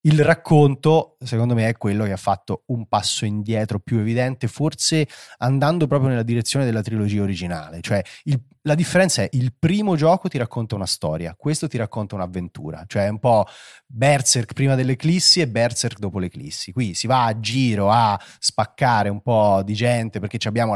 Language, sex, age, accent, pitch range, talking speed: Italian, male, 30-49, native, 100-125 Hz, 175 wpm